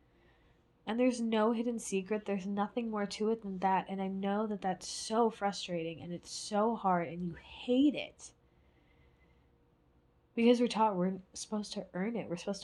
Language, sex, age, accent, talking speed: English, female, 10-29, American, 175 wpm